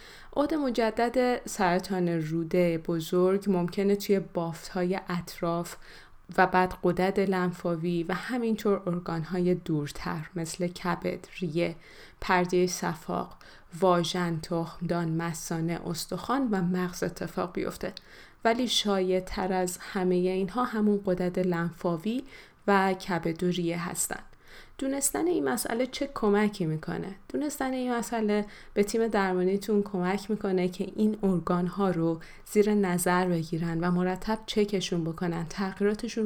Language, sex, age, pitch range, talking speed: Persian, female, 20-39, 175-210 Hz, 115 wpm